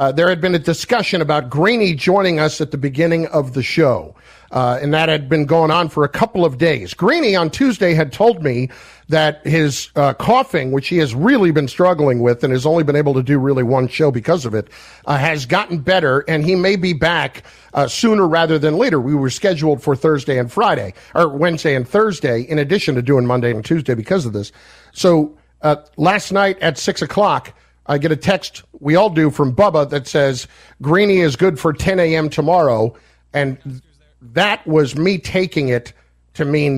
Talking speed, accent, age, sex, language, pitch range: 205 wpm, American, 50-69, male, English, 145-190 Hz